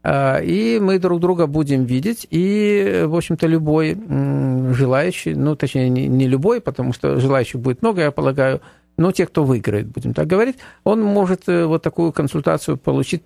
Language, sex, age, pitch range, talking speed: Russian, male, 50-69, 125-165 Hz, 160 wpm